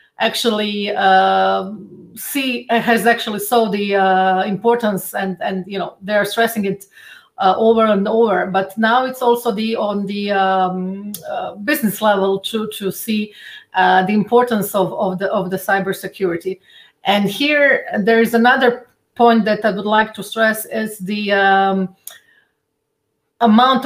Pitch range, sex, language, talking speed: 195-230 Hz, female, English, 150 wpm